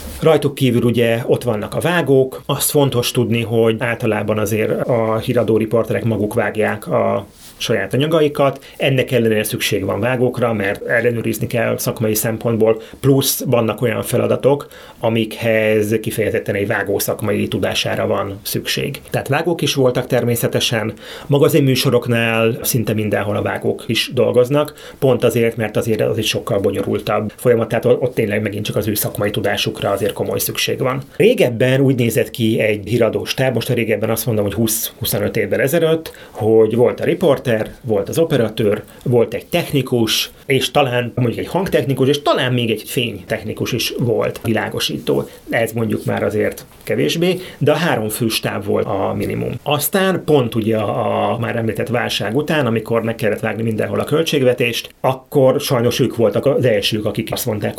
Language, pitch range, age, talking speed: Hungarian, 110-130 Hz, 30-49, 160 wpm